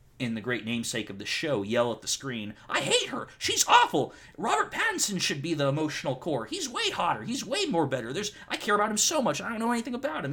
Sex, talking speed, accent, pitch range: male, 250 wpm, American, 110-155 Hz